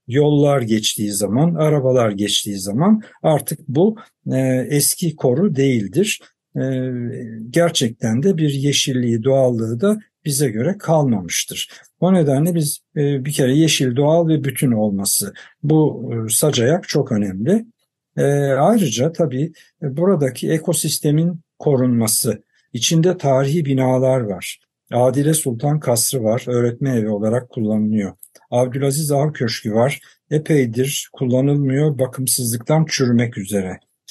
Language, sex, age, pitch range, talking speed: Turkish, male, 60-79, 115-155 Hz, 115 wpm